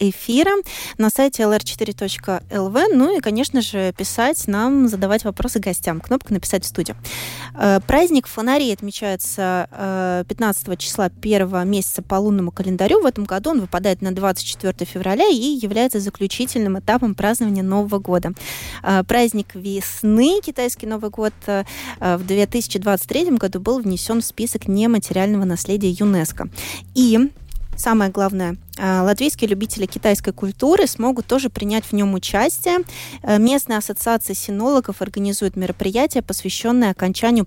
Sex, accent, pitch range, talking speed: female, native, 190-230 Hz, 125 wpm